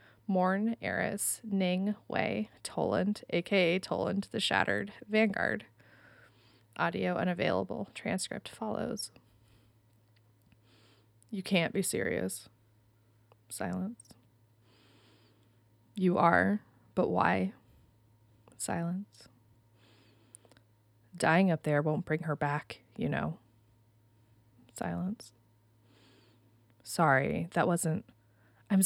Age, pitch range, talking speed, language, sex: 20-39, 110-185 Hz, 80 wpm, English, female